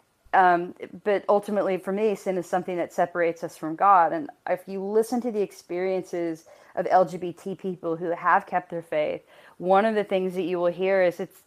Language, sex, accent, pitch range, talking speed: English, female, American, 170-195 Hz, 200 wpm